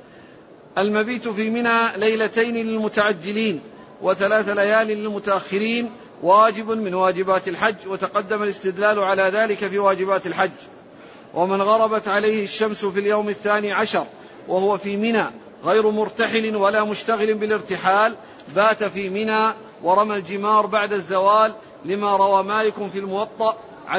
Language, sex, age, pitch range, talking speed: Arabic, male, 40-59, 190-215 Hz, 120 wpm